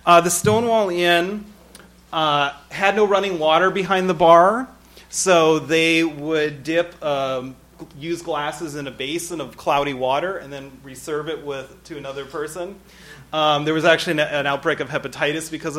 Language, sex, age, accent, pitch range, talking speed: English, male, 30-49, American, 140-170 Hz, 165 wpm